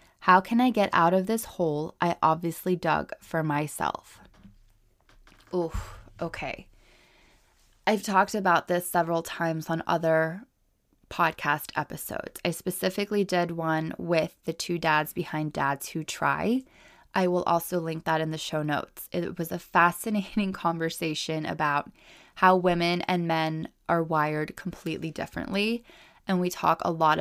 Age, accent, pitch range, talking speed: 20-39, American, 160-190 Hz, 145 wpm